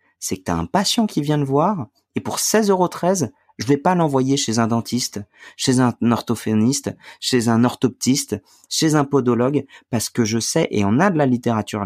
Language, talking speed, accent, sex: French, 195 wpm, French, male